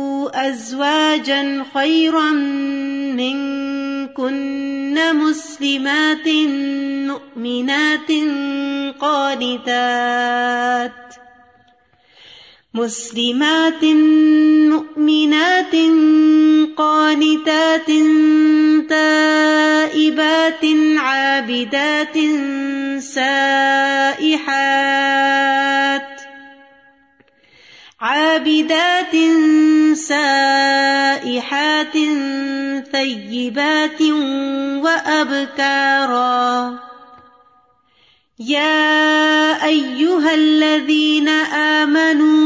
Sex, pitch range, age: female, 275-310 Hz, 30-49